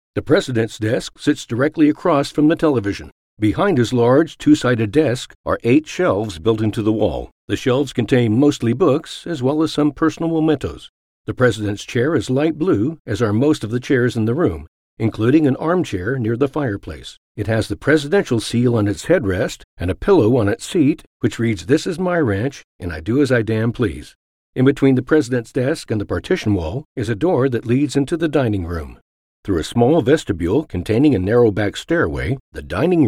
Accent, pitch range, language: American, 110-150 Hz, English